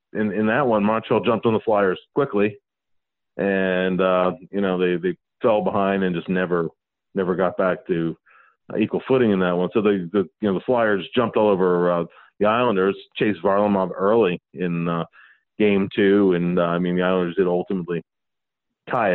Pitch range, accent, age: 90-105 Hz, American, 40-59